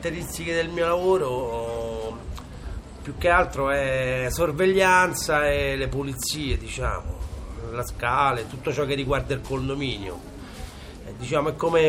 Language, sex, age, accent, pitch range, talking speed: Italian, male, 30-49, native, 115-165 Hz, 120 wpm